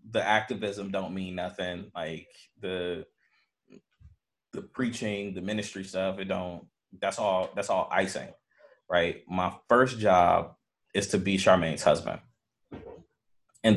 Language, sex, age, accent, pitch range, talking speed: English, male, 20-39, American, 90-105 Hz, 125 wpm